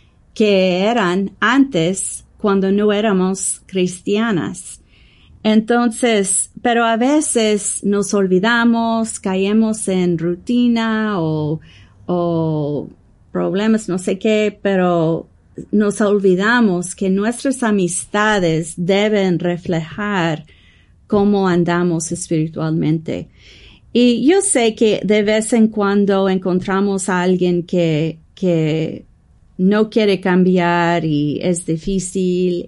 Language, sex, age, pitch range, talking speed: English, female, 40-59, 170-215 Hz, 95 wpm